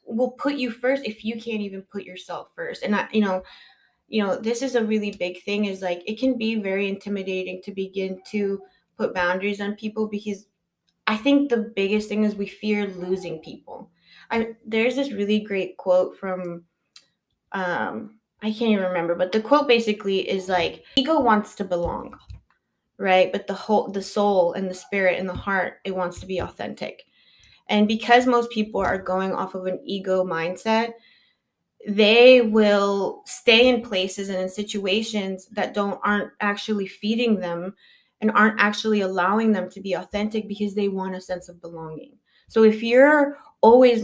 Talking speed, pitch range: 180 wpm, 190-225 Hz